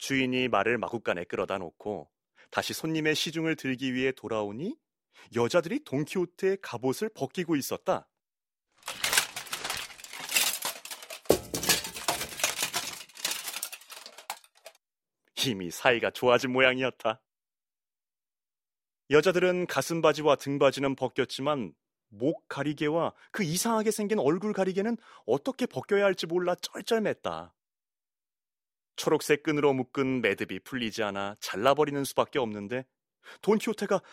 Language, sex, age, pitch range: Korean, male, 30-49, 120-180 Hz